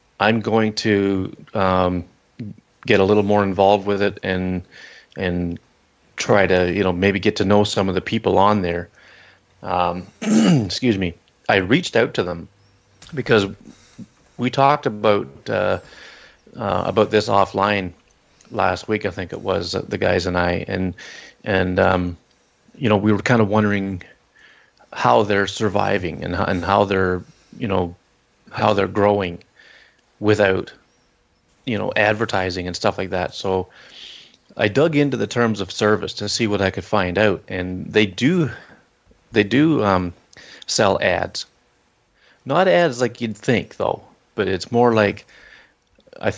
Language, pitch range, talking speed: English, 95-110 Hz, 155 wpm